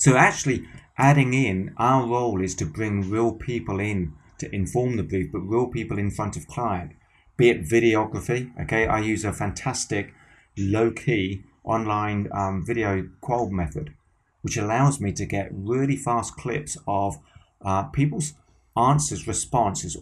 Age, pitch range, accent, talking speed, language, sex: 30-49, 95-130 Hz, British, 150 wpm, English, male